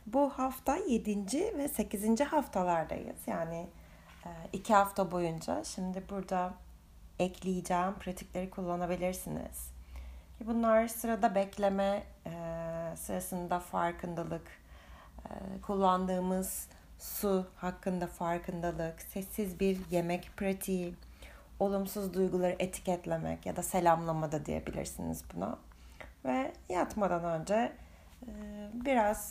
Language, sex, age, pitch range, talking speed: Turkish, female, 30-49, 175-240 Hz, 80 wpm